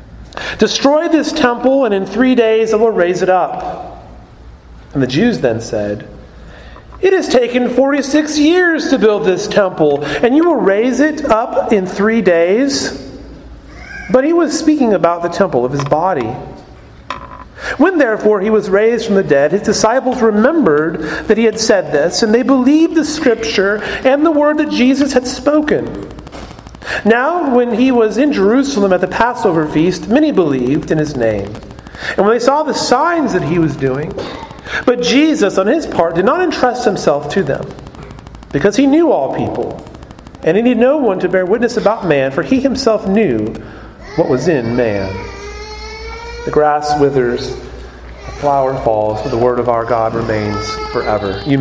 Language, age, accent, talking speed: English, 40-59, American, 170 wpm